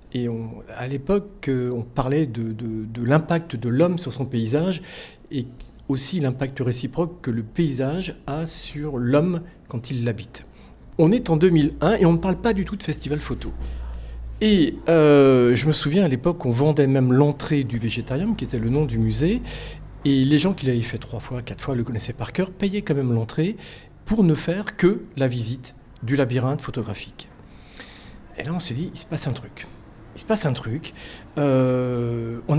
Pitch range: 120-165 Hz